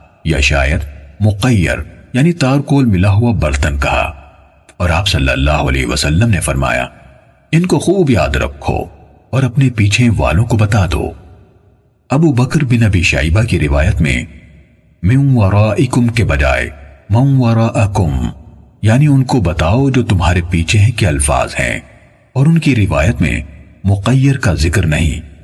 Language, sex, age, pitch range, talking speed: Urdu, male, 50-69, 75-120 Hz, 145 wpm